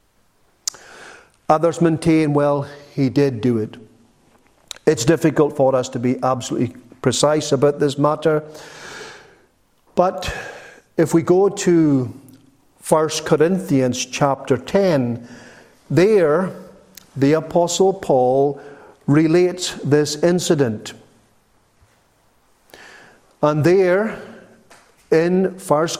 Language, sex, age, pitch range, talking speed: English, male, 50-69, 140-180 Hz, 90 wpm